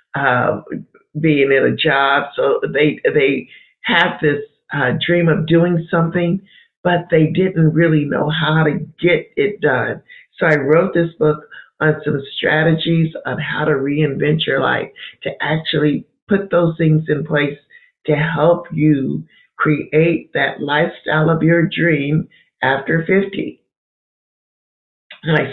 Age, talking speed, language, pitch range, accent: 50-69, 135 wpm, English, 150-175 Hz, American